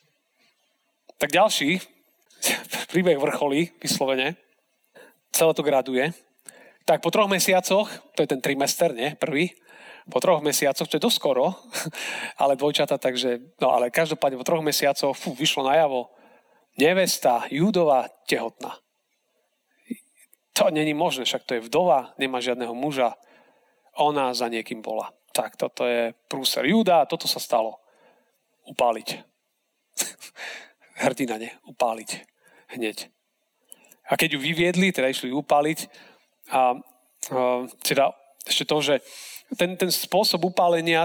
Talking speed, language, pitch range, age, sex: 125 wpm, Slovak, 135-175 Hz, 40-59, male